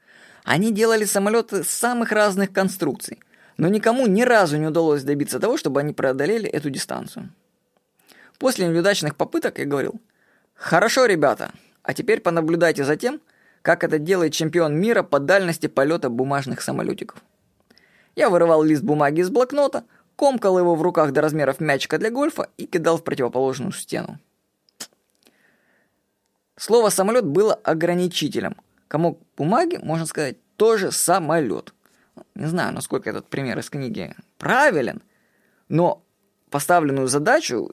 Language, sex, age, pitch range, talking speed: Russian, female, 20-39, 145-205 Hz, 130 wpm